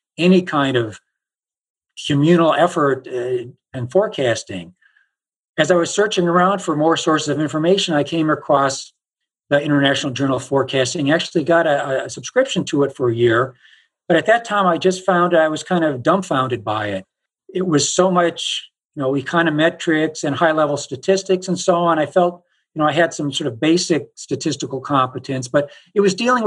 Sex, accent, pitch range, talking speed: male, American, 140-185 Hz, 180 wpm